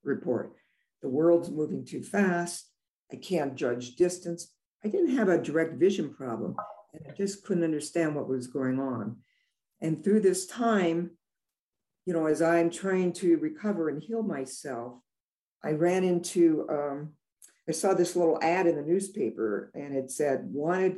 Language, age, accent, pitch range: English, 60-79, American, 135-175 Hz